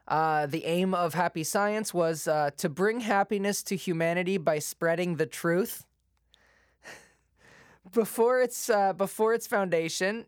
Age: 20-39